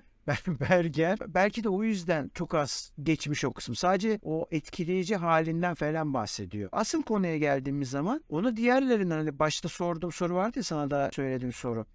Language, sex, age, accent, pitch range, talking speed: Turkish, male, 60-79, native, 145-195 Hz, 160 wpm